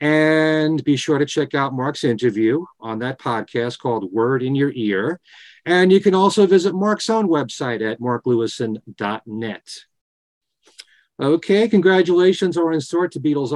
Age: 50-69